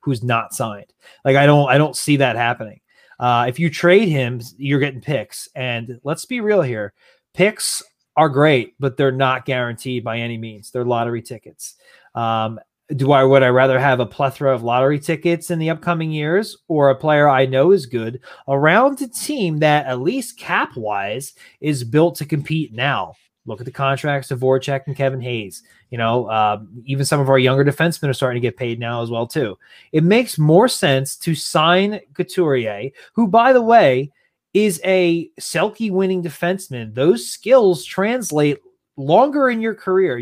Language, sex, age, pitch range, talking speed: English, male, 30-49, 130-185 Hz, 180 wpm